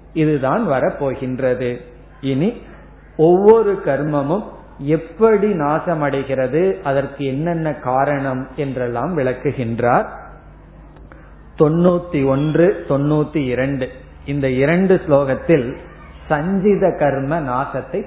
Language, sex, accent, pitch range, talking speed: Tamil, male, native, 130-165 Hz, 75 wpm